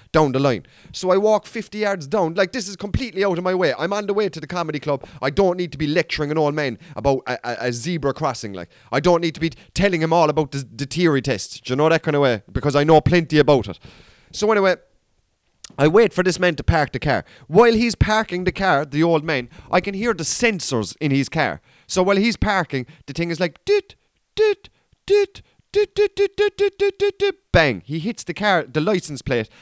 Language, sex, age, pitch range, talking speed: English, male, 30-49, 145-210 Hz, 230 wpm